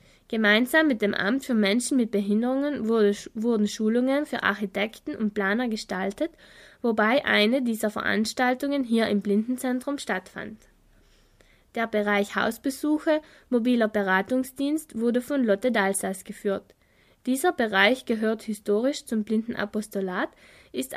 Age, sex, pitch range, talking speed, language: 20-39, female, 205-255 Hz, 115 wpm, German